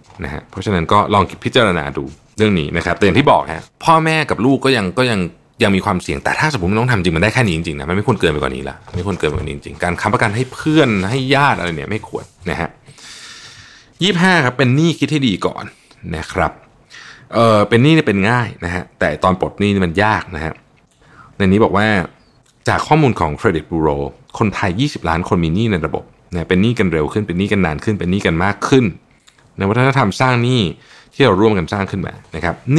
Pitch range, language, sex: 90-125 Hz, Thai, male